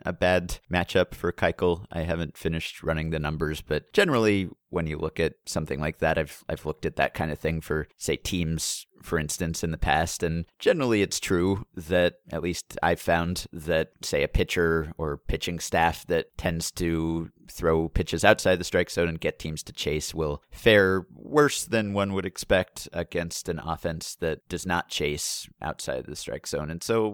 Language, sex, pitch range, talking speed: English, male, 80-95 Hz, 190 wpm